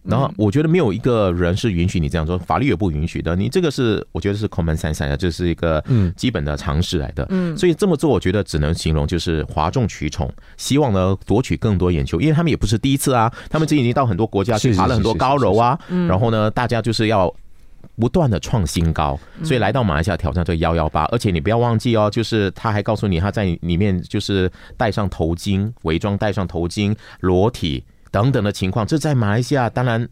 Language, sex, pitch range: Chinese, male, 85-120 Hz